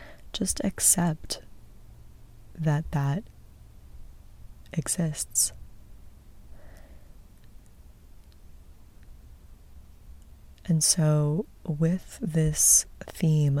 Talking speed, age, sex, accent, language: 45 wpm, 20-39, female, American, English